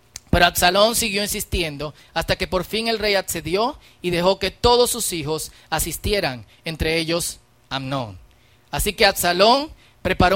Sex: male